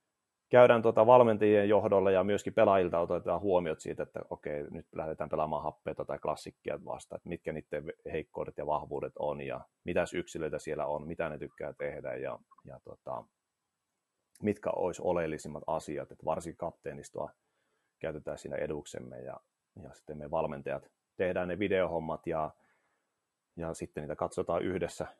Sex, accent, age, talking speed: male, native, 30-49, 145 wpm